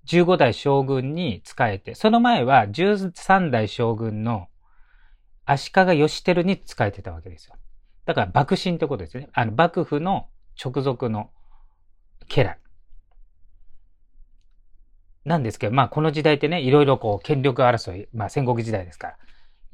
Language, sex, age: Japanese, male, 40-59